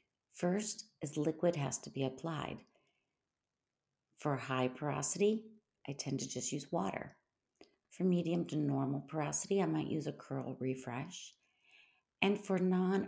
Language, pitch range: English, 135-170 Hz